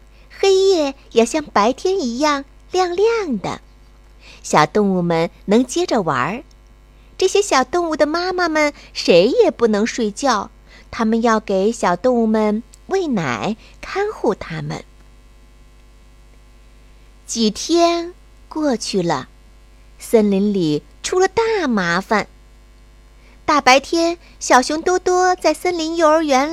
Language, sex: Chinese, female